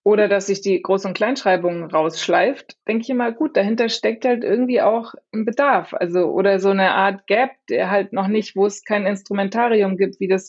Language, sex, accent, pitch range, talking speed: German, female, German, 190-230 Hz, 205 wpm